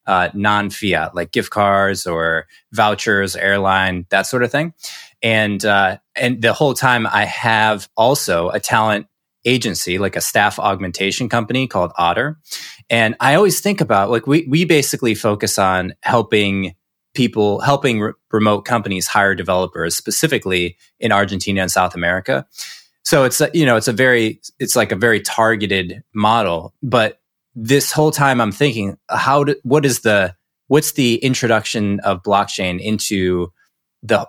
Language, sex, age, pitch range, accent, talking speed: English, male, 20-39, 95-125 Hz, American, 155 wpm